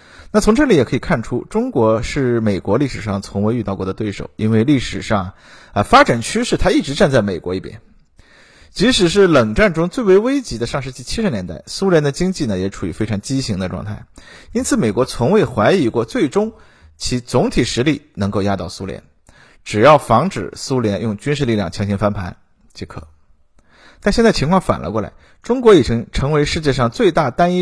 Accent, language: native, Chinese